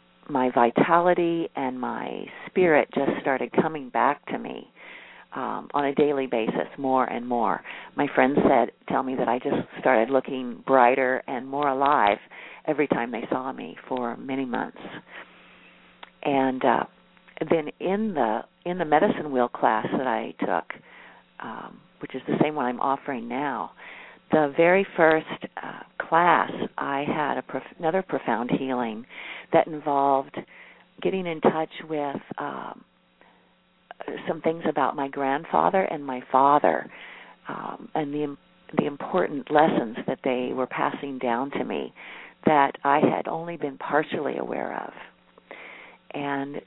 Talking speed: 145 wpm